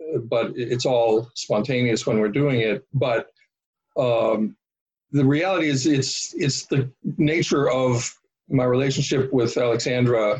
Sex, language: male, English